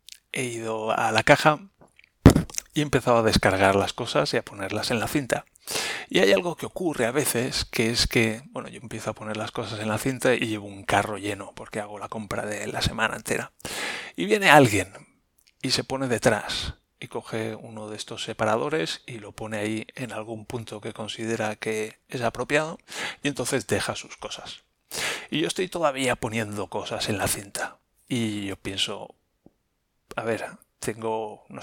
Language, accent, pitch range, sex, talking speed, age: Spanish, Spanish, 110-130 Hz, male, 185 wpm, 30-49